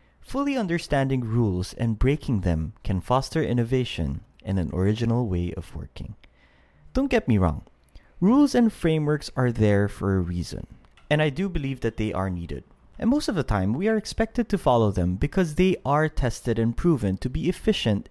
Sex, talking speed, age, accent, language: male, 180 wpm, 30-49, Filipino, English